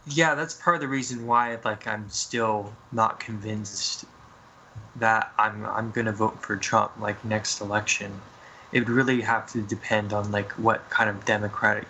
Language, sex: English, male